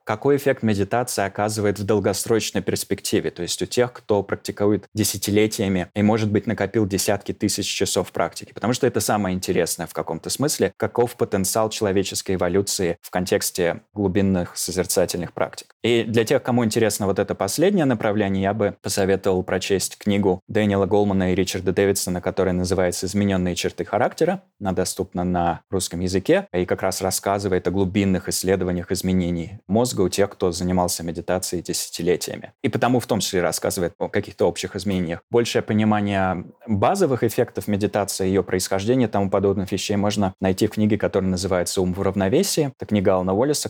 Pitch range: 95-110 Hz